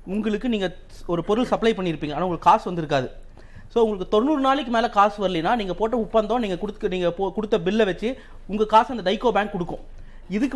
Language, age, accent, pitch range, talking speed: Tamil, 30-49, native, 175-235 Hz, 190 wpm